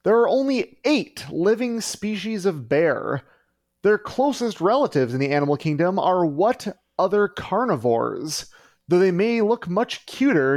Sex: male